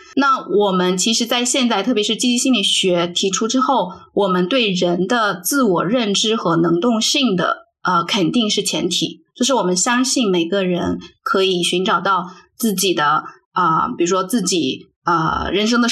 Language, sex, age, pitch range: Chinese, female, 20-39, 185-250 Hz